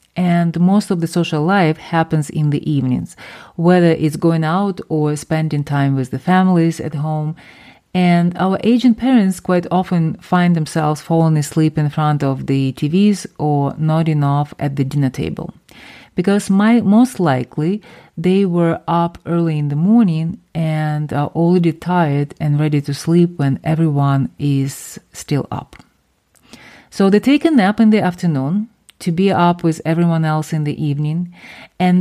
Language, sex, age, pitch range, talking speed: English, female, 30-49, 150-190 Hz, 160 wpm